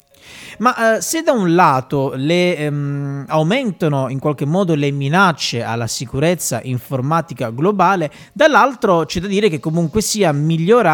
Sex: male